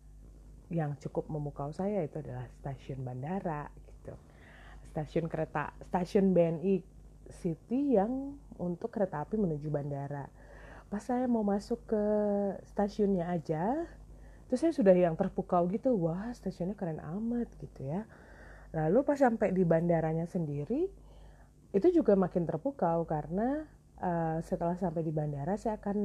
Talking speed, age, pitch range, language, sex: 130 wpm, 30-49, 160-215 Hz, Indonesian, female